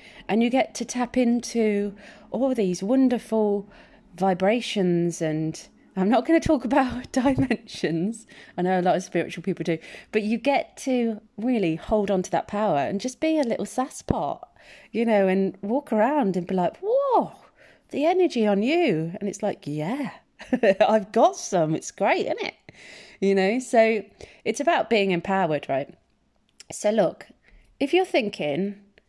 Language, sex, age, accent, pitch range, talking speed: English, female, 30-49, British, 185-250 Hz, 165 wpm